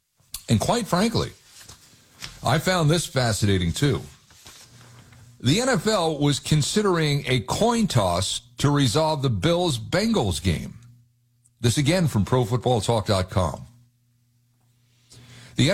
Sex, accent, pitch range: male, American, 120-175 Hz